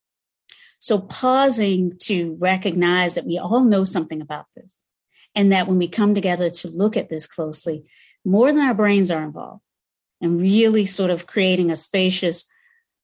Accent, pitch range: American, 165-195 Hz